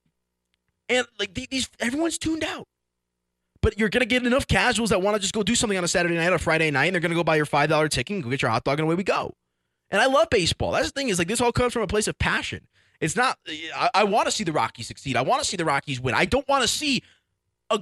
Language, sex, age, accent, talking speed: English, male, 20-39, American, 290 wpm